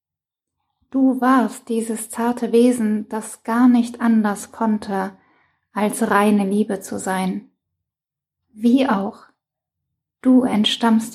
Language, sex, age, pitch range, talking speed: German, female, 20-39, 210-240 Hz, 100 wpm